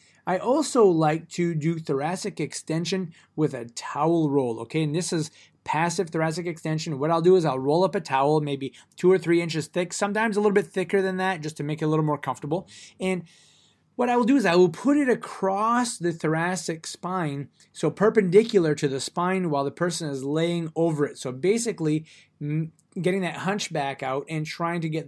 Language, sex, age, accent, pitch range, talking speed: English, male, 20-39, American, 145-185 Hz, 200 wpm